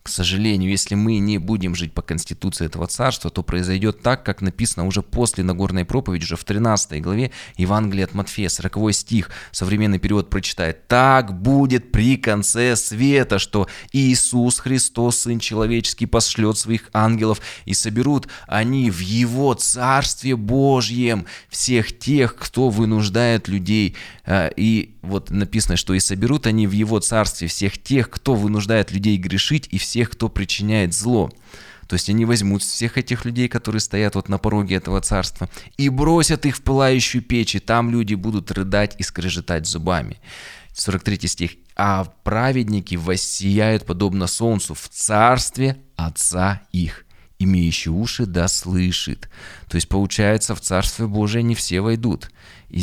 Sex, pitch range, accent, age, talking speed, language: male, 90-115 Hz, native, 20-39, 150 wpm, Russian